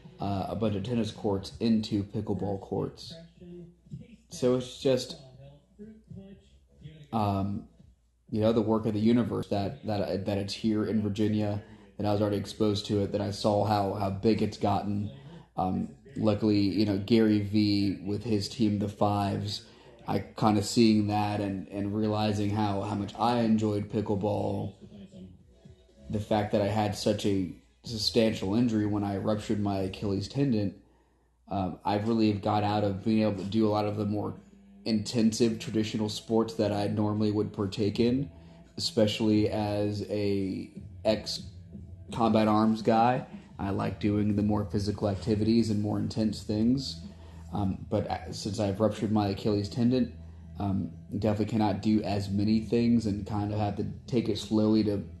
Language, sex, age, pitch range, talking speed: English, male, 30-49, 100-110 Hz, 160 wpm